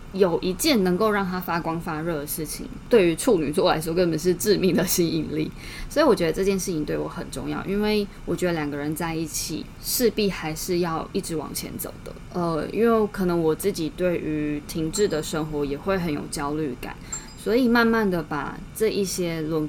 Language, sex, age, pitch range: Chinese, female, 20-39, 155-200 Hz